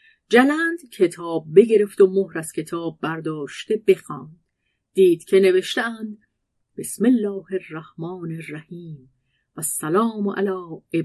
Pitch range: 160-230 Hz